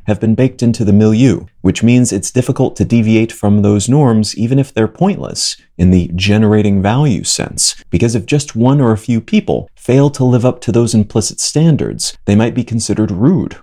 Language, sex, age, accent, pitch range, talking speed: English, male, 30-49, American, 105-125 Hz, 200 wpm